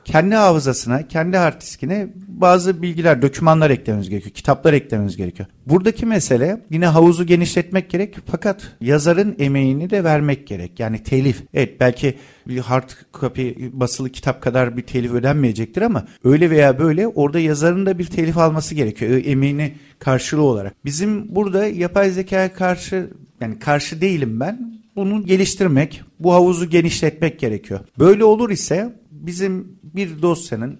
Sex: male